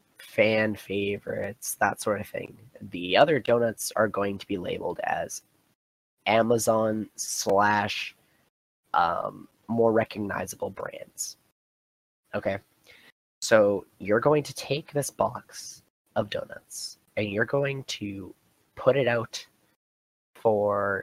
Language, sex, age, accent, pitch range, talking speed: English, male, 20-39, American, 95-115 Hz, 110 wpm